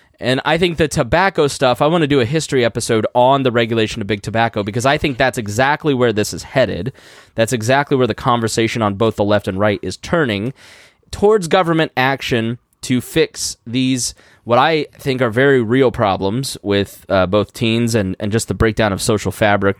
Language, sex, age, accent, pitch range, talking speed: English, male, 20-39, American, 110-135 Hz, 200 wpm